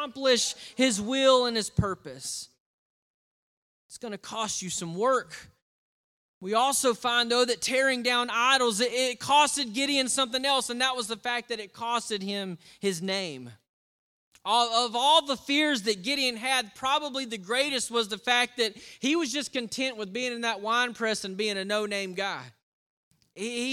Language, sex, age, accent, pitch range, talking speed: English, male, 30-49, American, 230-275 Hz, 170 wpm